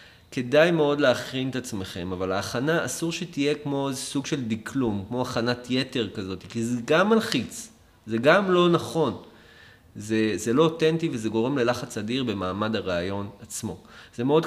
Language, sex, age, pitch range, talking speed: Hebrew, male, 30-49, 110-160 Hz, 160 wpm